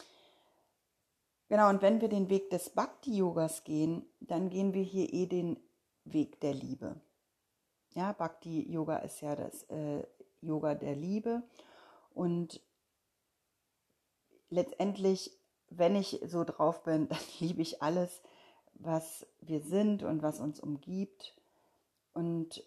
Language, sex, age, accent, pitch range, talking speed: German, female, 30-49, German, 155-195 Hz, 120 wpm